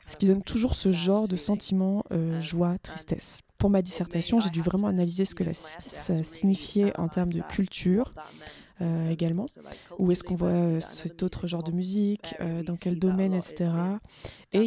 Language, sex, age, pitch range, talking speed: French, female, 20-39, 175-200 Hz, 180 wpm